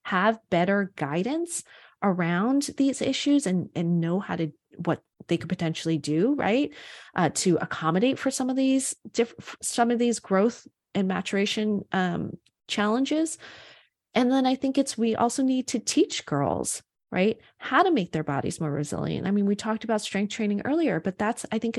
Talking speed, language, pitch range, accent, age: 175 wpm, English, 165-235 Hz, American, 30-49